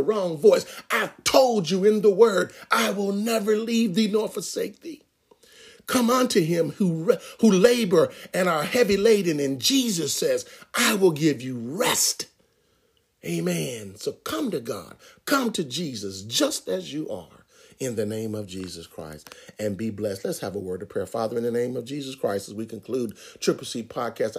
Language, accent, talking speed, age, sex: English, American, 180 wpm, 50-69, male